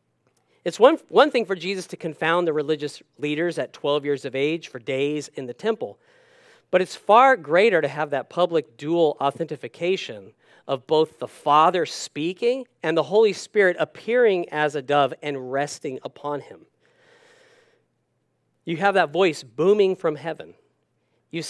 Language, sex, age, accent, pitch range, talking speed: English, male, 40-59, American, 150-220 Hz, 155 wpm